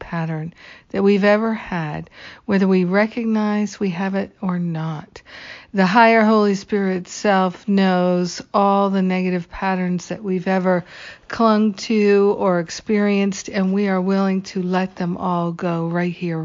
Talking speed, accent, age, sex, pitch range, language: 150 wpm, American, 50-69, female, 175-205 Hz, English